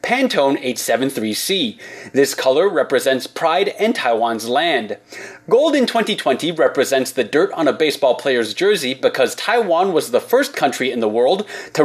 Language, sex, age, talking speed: English, male, 30-49, 150 wpm